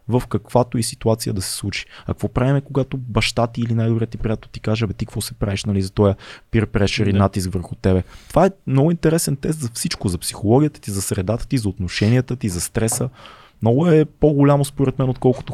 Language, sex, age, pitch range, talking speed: Bulgarian, male, 20-39, 105-130 Hz, 215 wpm